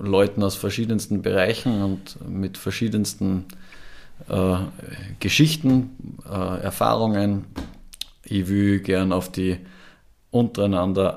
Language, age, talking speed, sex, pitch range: German, 20-39, 90 wpm, male, 95-105 Hz